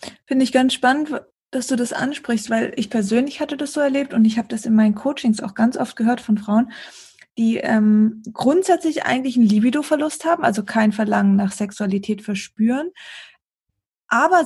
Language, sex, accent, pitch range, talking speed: German, female, German, 210-260 Hz, 175 wpm